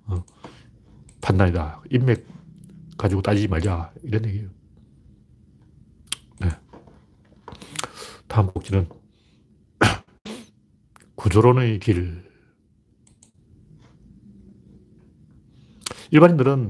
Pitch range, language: 100-130 Hz, Korean